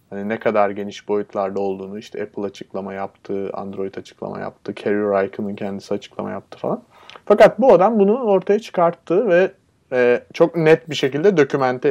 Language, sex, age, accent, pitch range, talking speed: Turkish, male, 30-49, native, 110-135 Hz, 160 wpm